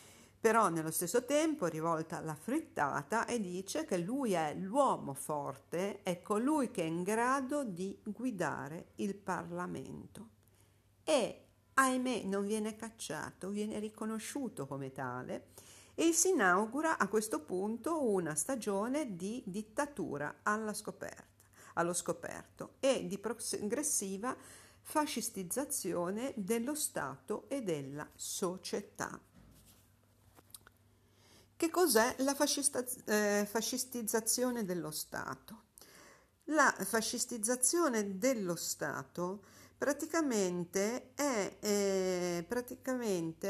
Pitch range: 175-255 Hz